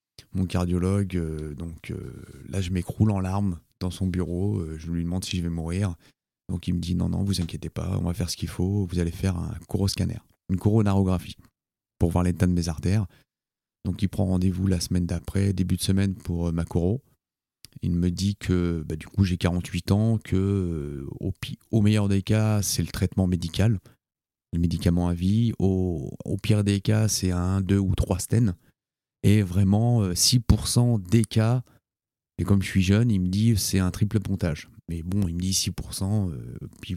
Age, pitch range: 30-49, 90-105 Hz